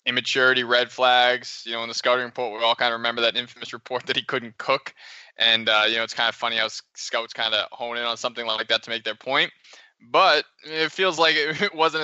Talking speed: 245 wpm